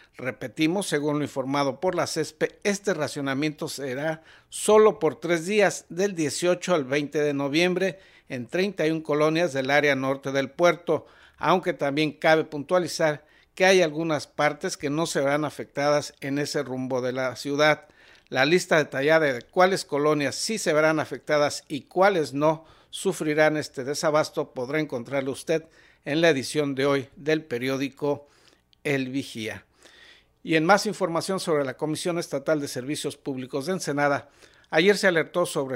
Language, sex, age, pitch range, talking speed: Spanish, male, 60-79, 140-175 Hz, 155 wpm